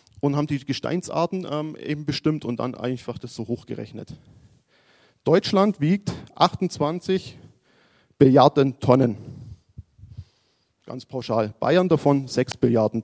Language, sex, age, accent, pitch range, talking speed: German, male, 40-59, German, 120-150 Hz, 110 wpm